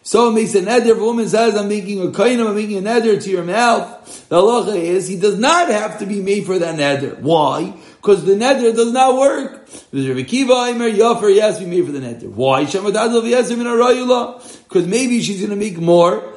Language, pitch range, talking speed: English, 200-245 Hz, 190 wpm